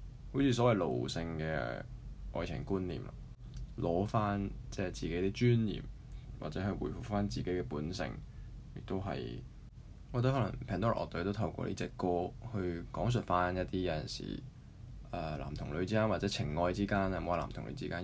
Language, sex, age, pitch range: Chinese, male, 20-39, 90-120 Hz